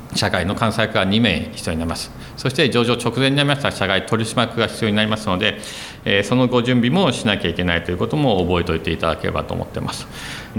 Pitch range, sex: 95-130 Hz, male